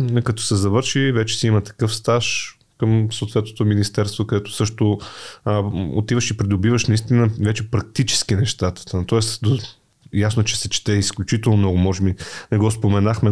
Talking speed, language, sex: 155 wpm, Bulgarian, male